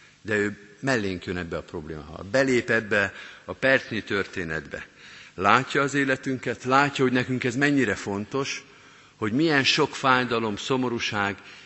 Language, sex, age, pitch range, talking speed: Hungarian, male, 50-69, 100-130 Hz, 140 wpm